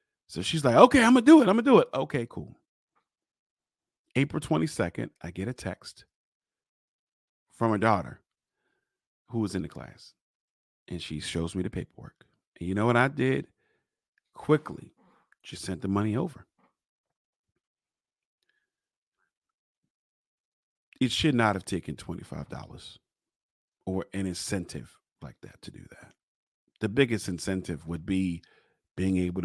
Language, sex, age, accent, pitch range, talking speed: English, male, 40-59, American, 95-155 Hz, 140 wpm